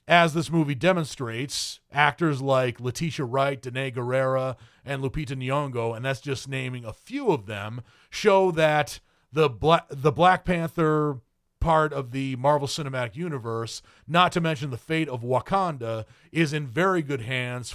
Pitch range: 130-165 Hz